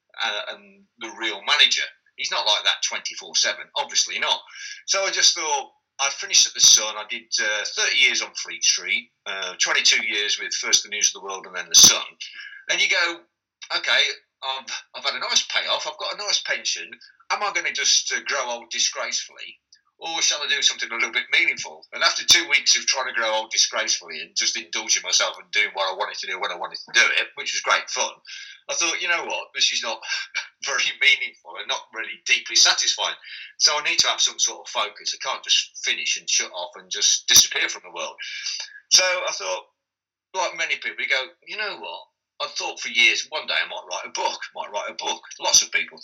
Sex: male